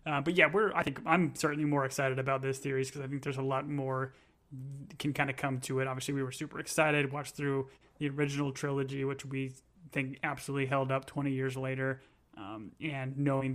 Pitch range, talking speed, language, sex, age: 135-145 Hz, 215 wpm, English, male, 30-49